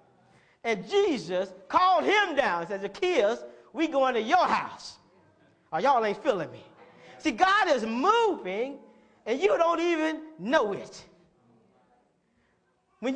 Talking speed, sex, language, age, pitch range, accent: 135 wpm, male, English, 40-59, 245-340 Hz, American